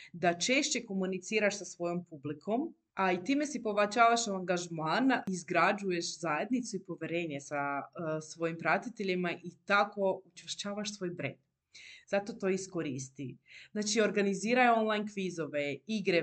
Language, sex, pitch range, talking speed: Croatian, female, 155-210 Hz, 120 wpm